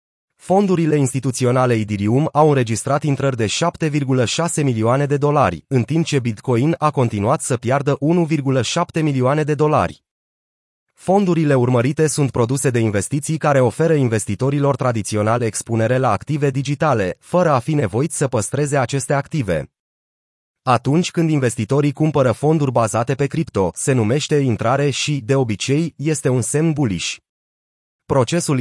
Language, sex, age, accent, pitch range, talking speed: Romanian, male, 30-49, native, 120-150 Hz, 135 wpm